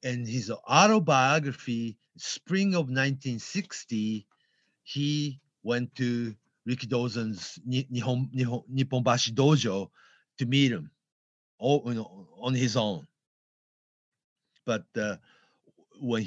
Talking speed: 90 wpm